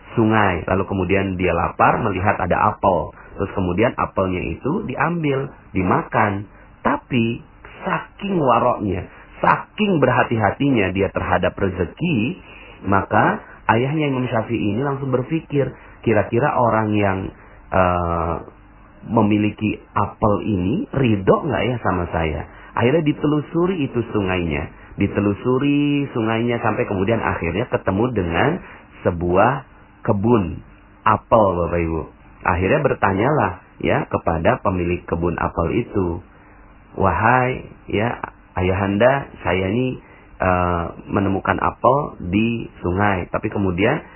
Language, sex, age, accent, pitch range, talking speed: Indonesian, male, 40-59, native, 95-120 Hz, 105 wpm